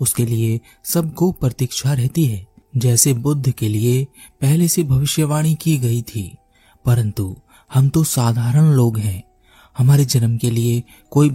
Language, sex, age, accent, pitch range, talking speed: Hindi, male, 30-49, native, 110-140 Hz, 145 wpm